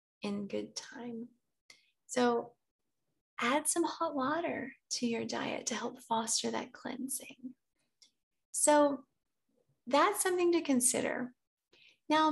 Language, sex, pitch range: English, female, 230-275 Hz